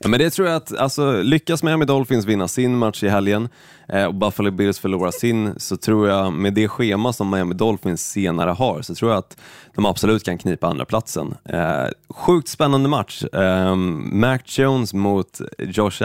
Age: 20-39